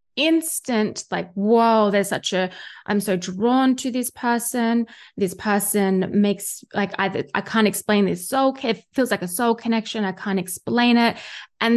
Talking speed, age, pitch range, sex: 170 wpm, 20-39, 190-225 Hz, female